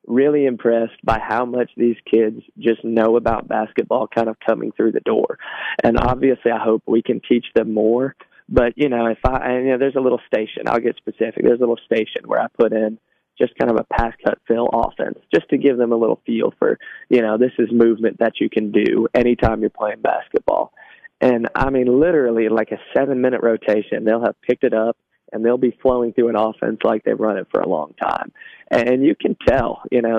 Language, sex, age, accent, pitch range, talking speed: English, male, 20-39, American, 110-125 Hz, 225 wpm